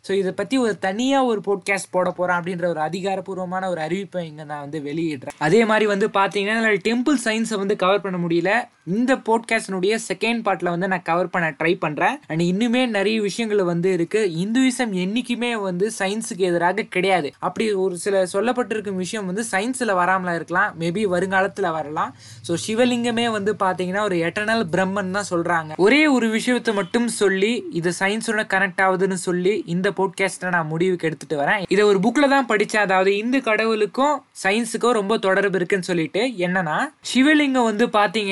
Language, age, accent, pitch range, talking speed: Tamil, 20-39, native, 185-230 Hz, 130 wpm